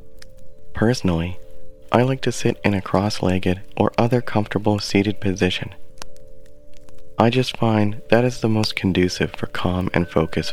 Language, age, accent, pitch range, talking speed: English, 30-49, American, 75-105 Hz, 140 wpm